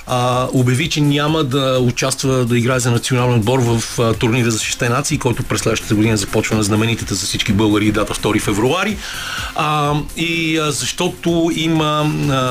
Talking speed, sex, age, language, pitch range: 170 wpm, male, 40-59, Bulgarian, 115-145 Hz